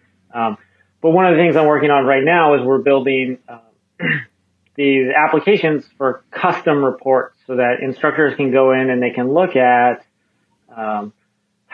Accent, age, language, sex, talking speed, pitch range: American, 30-49, English, male, 165 wpm, 120-145 Hz